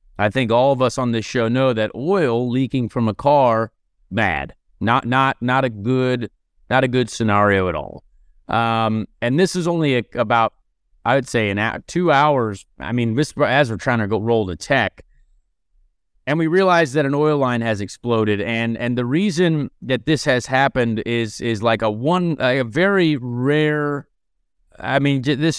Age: 30-49